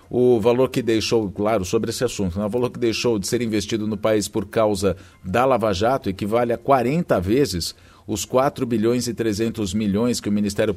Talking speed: 190 wpm